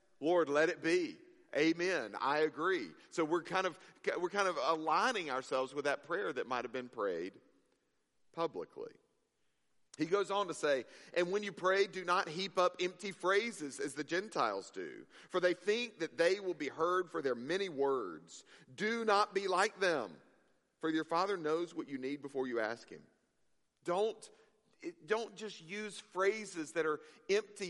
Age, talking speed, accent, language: 50-69, 170 wpm, American, English